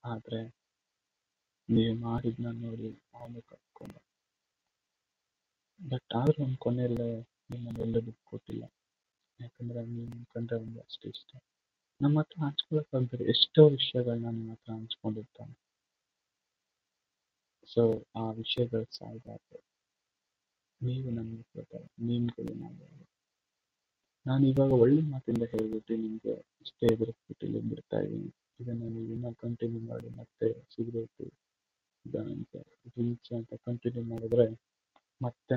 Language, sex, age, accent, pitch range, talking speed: Kannada, male, 30-49, native, 115-130 Hz, 90 wpm